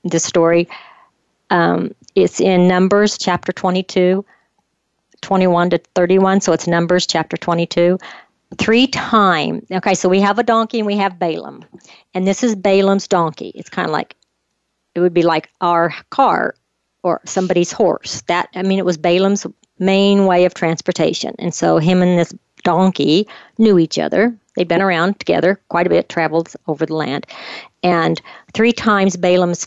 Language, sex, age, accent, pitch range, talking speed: English, female, 50-69, American, 170-195 Hz, 160 wpm